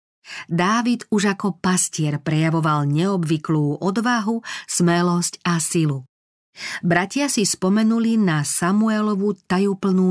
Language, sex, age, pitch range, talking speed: Slovak, female, 40-59, 160-200 Hz, 95 wpm